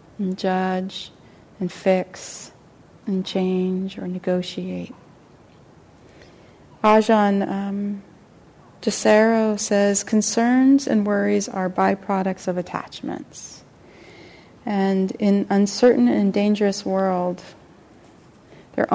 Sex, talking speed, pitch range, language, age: female, 80 wpm, 185-210 Hz, English, 30-49